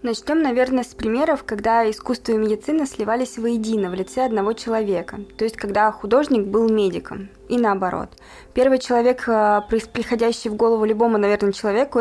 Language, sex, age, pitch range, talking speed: Russian, female, 20-39, 200-235 Hz, 150 wpm